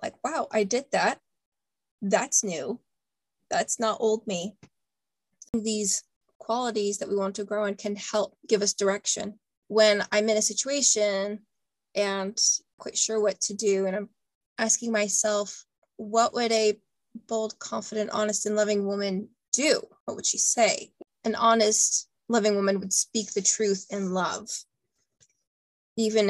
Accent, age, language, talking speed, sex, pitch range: American, 20-39, English, 145 wpm, female, 200-225 Hz